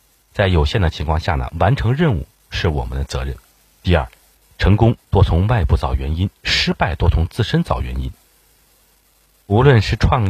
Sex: male